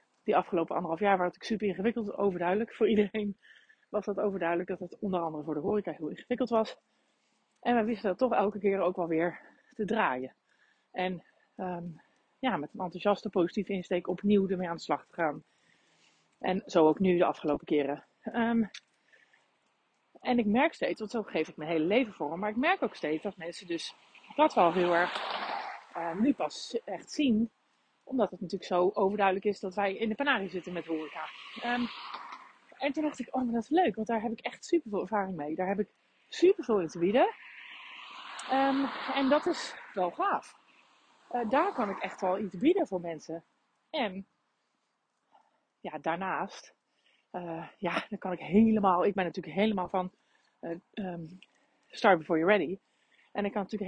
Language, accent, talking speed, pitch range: Dutch, Dutch, 190 wpm, 180-235 Hz